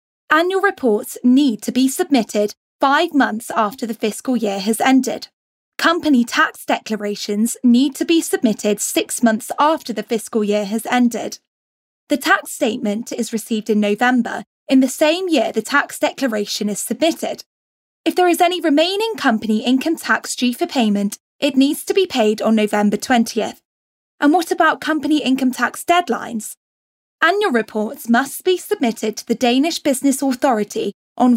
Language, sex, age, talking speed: English, female, 10-29, 155 wpm